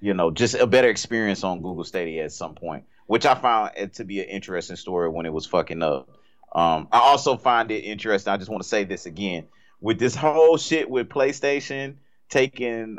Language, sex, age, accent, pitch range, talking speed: English, male, 30-49, American, 90-105 Hz, 210 wpm